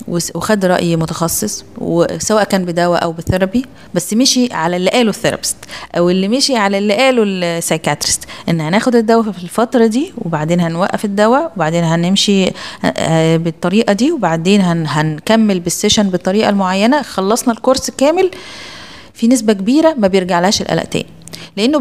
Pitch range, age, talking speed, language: 180-240 Hz, 20-39, 130 wpm, Arabic